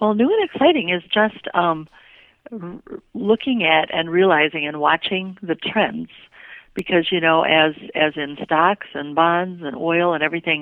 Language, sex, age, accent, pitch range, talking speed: English, female, 50-69, American, 160-195 Hz, 165 wpm